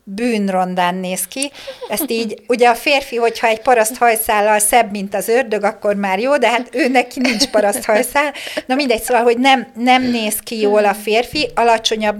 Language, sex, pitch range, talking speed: Hungarian, female, 205-245 Hz, 170 wpm